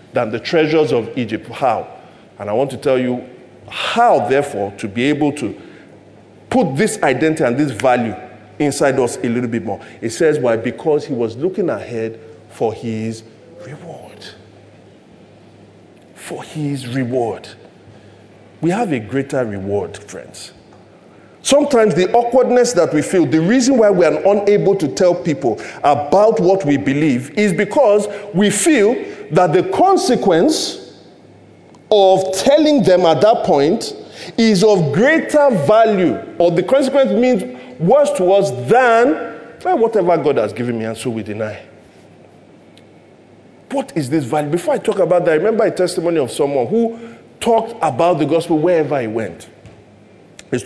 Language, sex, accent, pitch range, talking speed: English, male, Nigerian, 125-205 Hz, 150 wpm